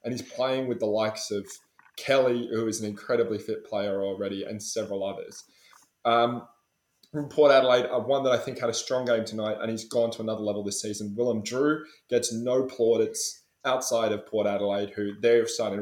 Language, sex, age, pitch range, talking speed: English, male, 20-39, 105-125 Hz, 190 wpm